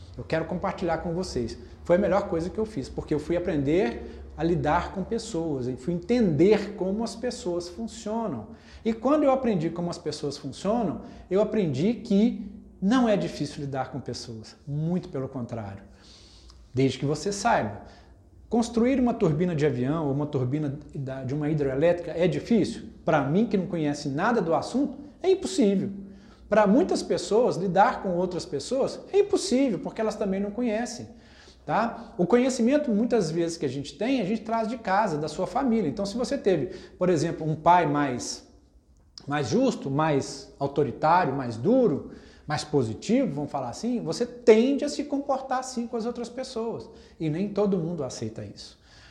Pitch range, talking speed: 145-225 Hz, 170 wpm